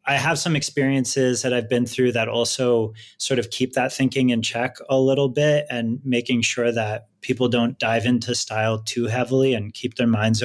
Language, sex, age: English, male, 30-49